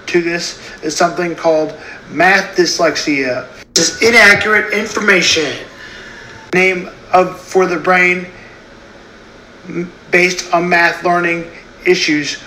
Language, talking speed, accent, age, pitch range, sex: English, 105 wpm, American, 40-59, 160-195 Hz, male